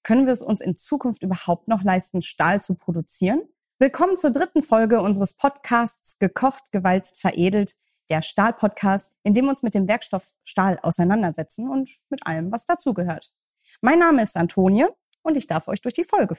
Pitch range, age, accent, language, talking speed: 170-245 Hz, 30-49, German, German, 175 wpm